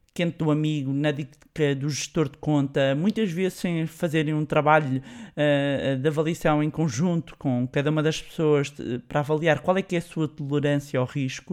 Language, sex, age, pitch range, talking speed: Portuguese, male, 20-39, 145-185 Hz, 180 wpm